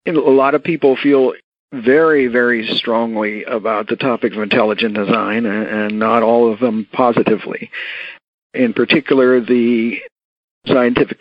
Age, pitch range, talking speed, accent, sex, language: 50-69, 110-130 Hz, 130 wpm, American, male, English